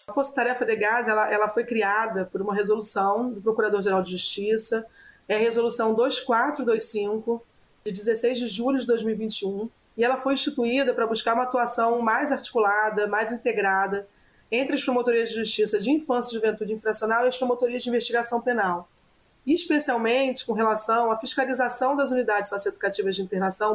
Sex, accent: female, Brazilian